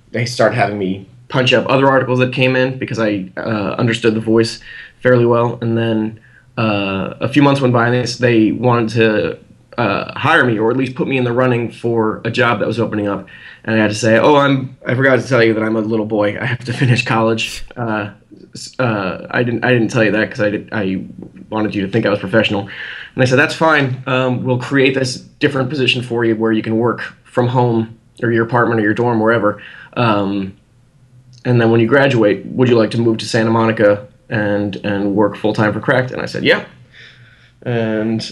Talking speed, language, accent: 220 wpm, English, American